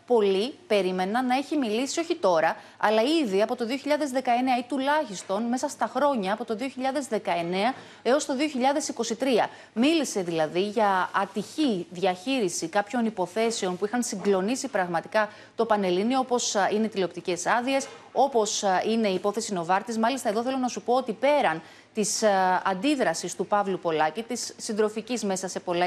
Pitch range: 195-255 Hz